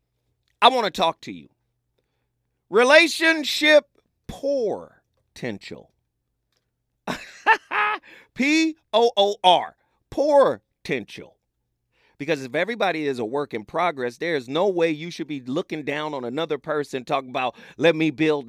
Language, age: English, 40-59